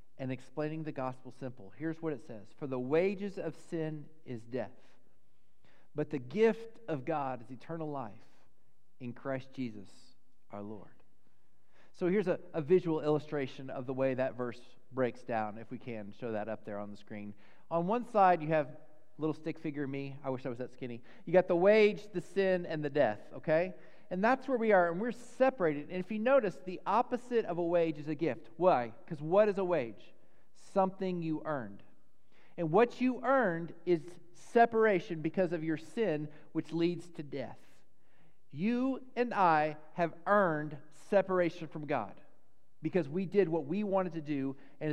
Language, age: English, 40-59